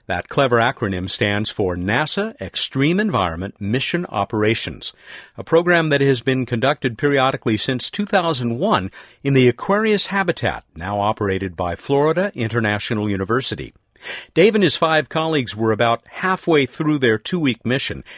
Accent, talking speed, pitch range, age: American, 135 wpm, 105-155 Hz, 50-69